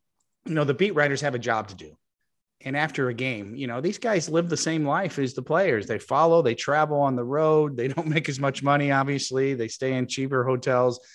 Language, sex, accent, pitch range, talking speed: English, male, American, 125-160 Hz, 235 wpm